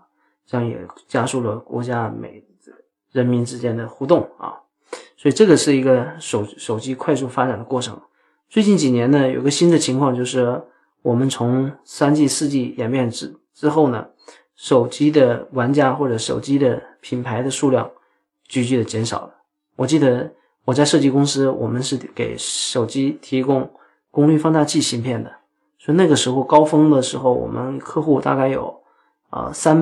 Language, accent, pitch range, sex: Chinese, native, 125-150 Hz, male